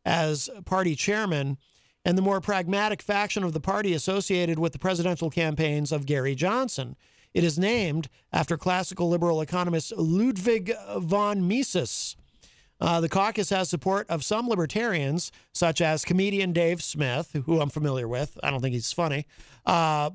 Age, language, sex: 50-69, English, male